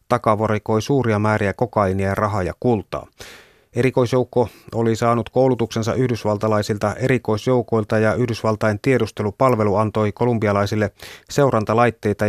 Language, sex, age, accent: Finnish, male, 30-49, native